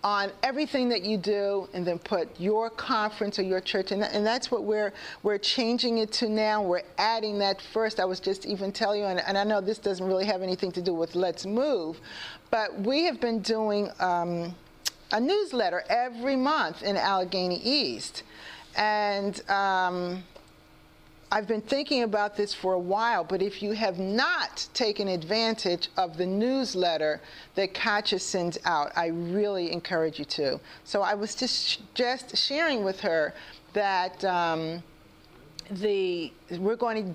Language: English